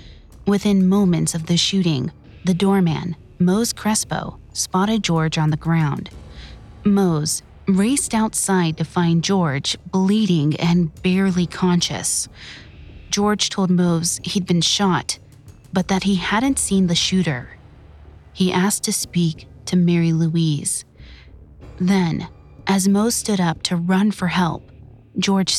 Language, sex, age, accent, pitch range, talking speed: English, female, 30-49, American, 145-190 Hz, 125 wpm